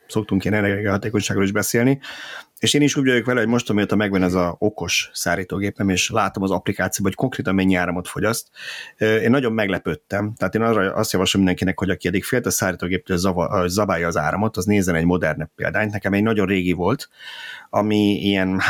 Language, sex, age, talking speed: Hungarian, male, 30-49, 190 wpm